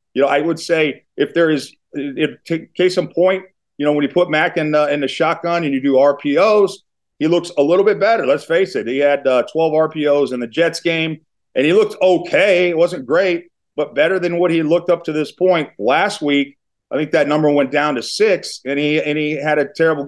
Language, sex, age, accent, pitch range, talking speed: English, male, 30-49, American, 145-175 Hz, 235 wpm